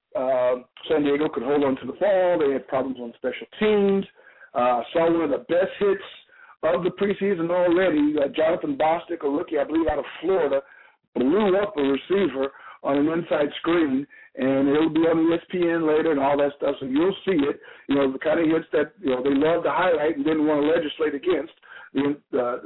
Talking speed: 210 wpm